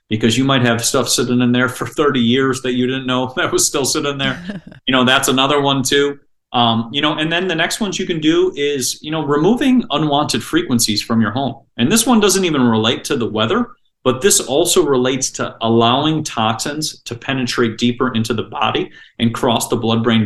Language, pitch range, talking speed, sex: English, 120-145 Hz, 215 wpm, male